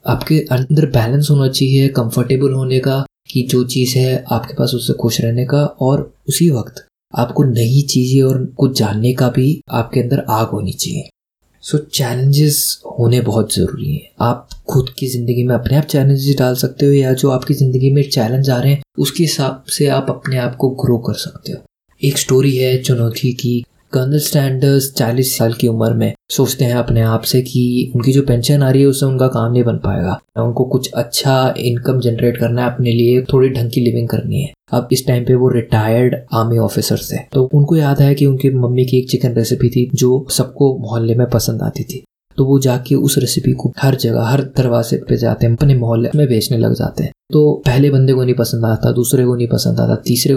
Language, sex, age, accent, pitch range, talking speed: Hindi, male, 20-39, native, 120-140 Hz, 210 wpm